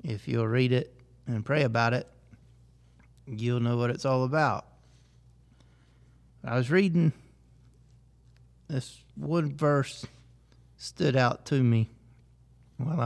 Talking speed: 115 wpm